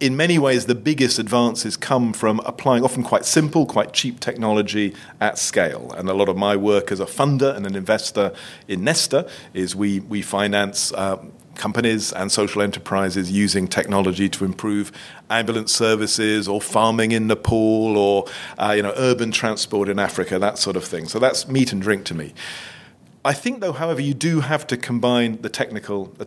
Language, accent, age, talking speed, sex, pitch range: English, British, 40-59, 180 wpm, male, 105-125 Hz